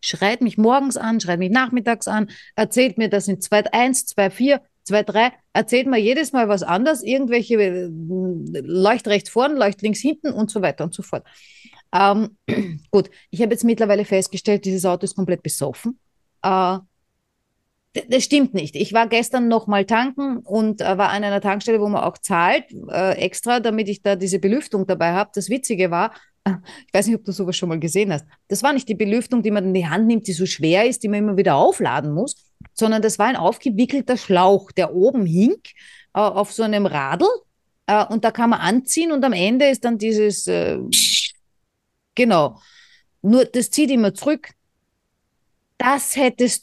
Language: German